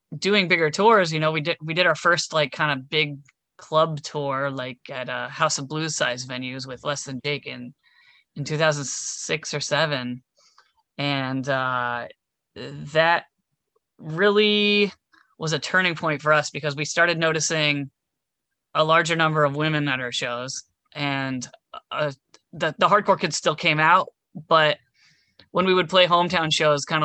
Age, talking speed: 20-39, 160 wpm